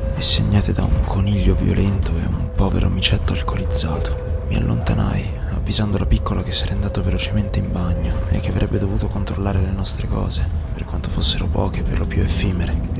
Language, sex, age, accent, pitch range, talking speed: Italian, male, 20-39, native, 85-105 Hz, 180 wpm